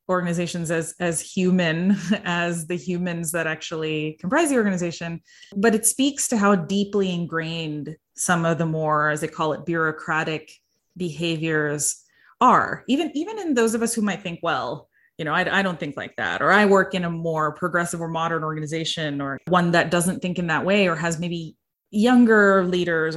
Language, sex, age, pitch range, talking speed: English, female, 20-39, 160-200 Hz, 185 wpm